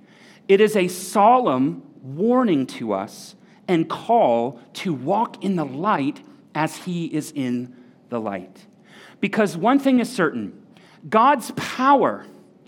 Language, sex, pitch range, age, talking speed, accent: English, male, 140-210 Hz, 40-59, 130 wpm, American